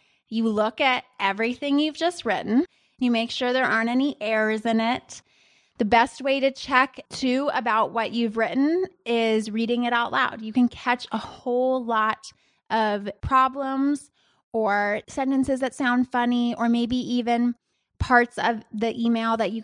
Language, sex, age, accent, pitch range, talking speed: English, female, 20-39, American, 225-260 Hz, 160 wpm